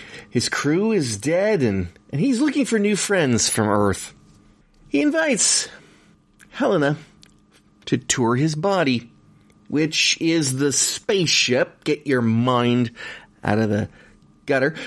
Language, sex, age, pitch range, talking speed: English, male, 30-49, 105-155 Hz, 125 wpm